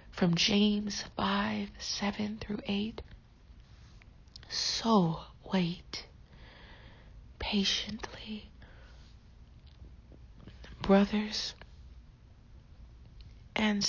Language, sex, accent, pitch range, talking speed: English, female, American, 155-210 Hz, 50 wpm